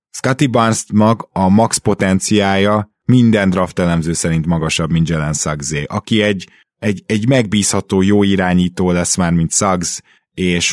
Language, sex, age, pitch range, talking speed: Hungarian, male, 20-39, 85-105 Hz, 145 wpm